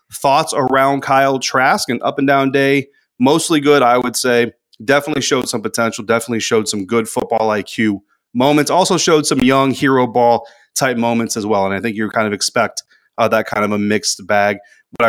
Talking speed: 200 wpm